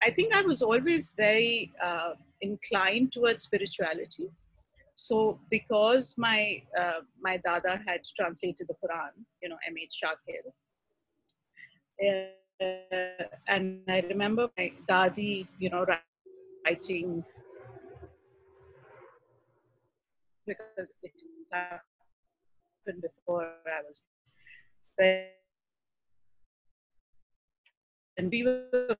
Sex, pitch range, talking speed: female, 180-215 Hz, 85 wpm